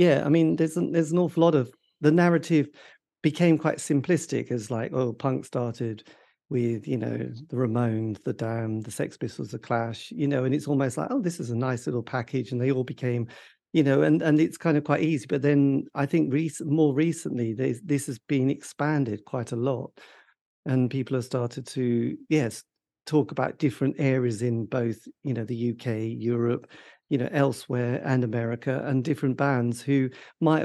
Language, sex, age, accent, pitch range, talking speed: English, male, 50-69, British, 120-145 Hz, 190 wpm